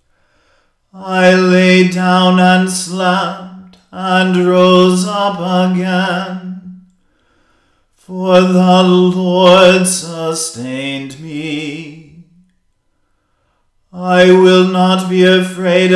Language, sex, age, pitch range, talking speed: English, male, 40-59, 180-185 Hz, 70 wpm